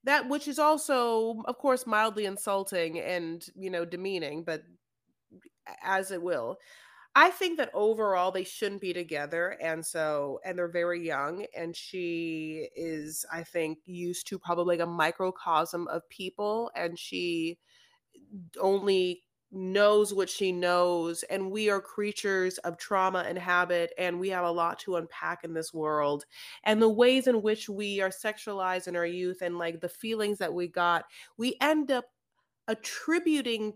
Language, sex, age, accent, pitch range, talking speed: English, female, 30-49, American, 170-235 Hz, 160 wpm